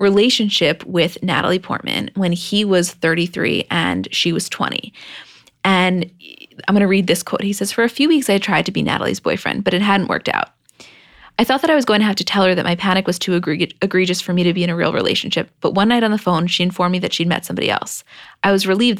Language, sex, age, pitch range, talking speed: English, female, 20-39, 175-210 Hz, 255 wpm